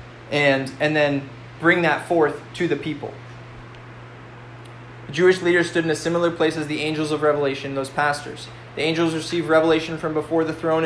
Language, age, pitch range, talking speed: English, 20-39, 145-170 Hz, 175 wpm